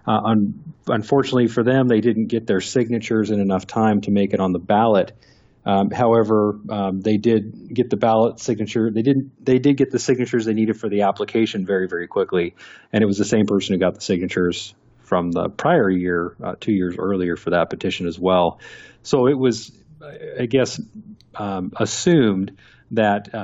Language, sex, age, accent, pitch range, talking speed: English, male, 40-59, American, 95-115 Hz, 190 wpm